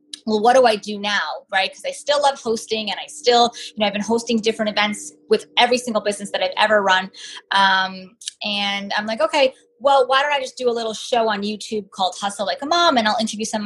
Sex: female